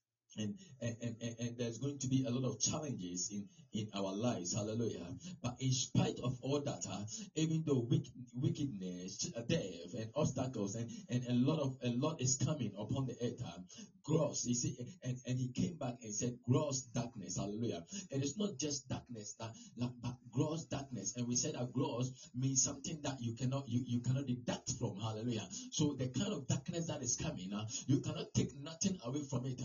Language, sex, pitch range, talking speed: English, male, 120-150 Hz, 200 wpm